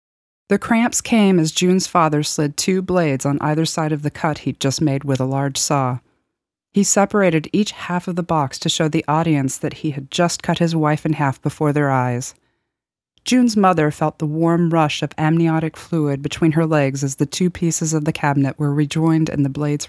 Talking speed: 210 wpm